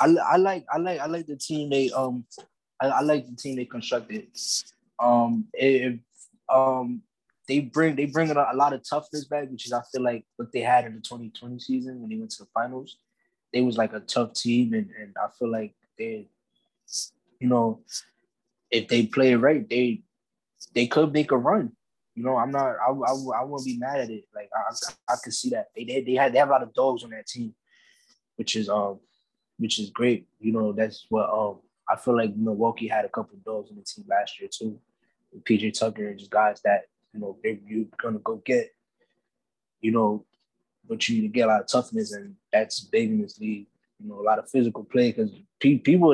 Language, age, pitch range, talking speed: English, 20-39, 115-150 Hz, 220 wpm